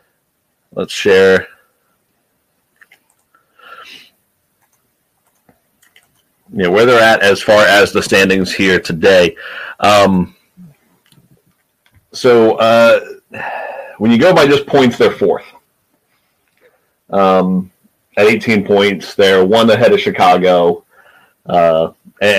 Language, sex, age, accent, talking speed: English, male, 40-59, American, 95 wpm